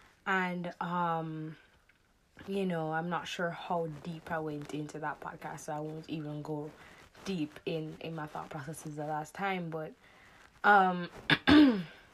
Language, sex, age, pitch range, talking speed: English, female, 20-39, 155-180 Hz, 150 wpm